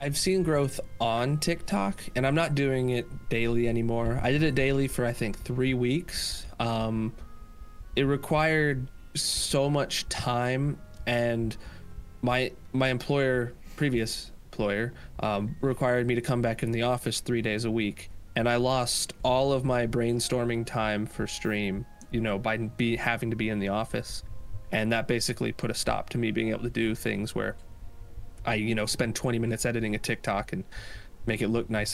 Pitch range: 105-130 Hz